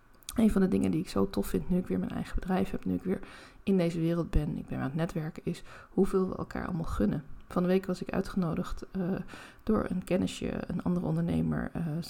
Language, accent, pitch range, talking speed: Dutch, Dutch, 155-190 Hz, 240 wpm